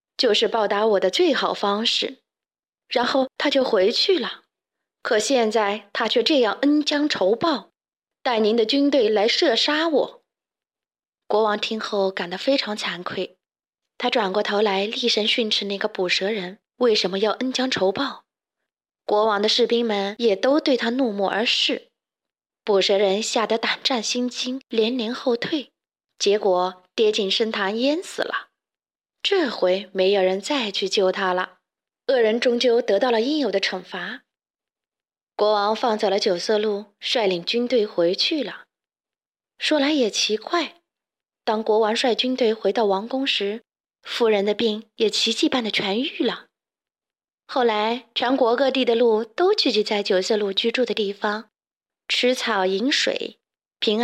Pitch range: 205-255 Hz